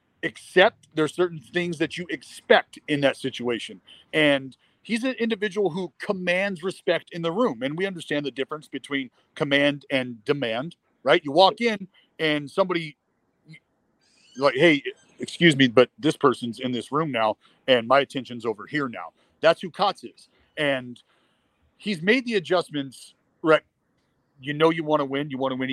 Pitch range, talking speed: 130-160 Hz, 170 wpm